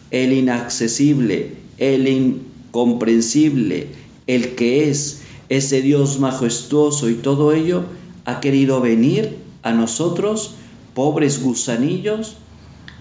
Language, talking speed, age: Spanish, 90 wpm, 50-69